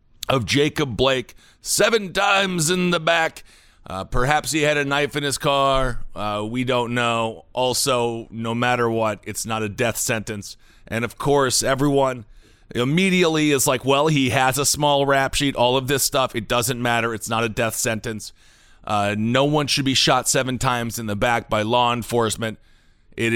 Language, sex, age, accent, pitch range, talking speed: English, male, 30-49, American, 115-150 Hz, 180 wpm